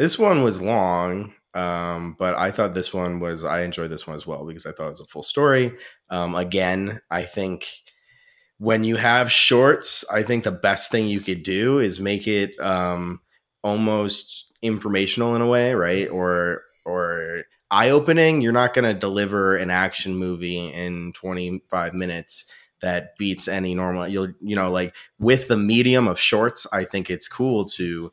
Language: English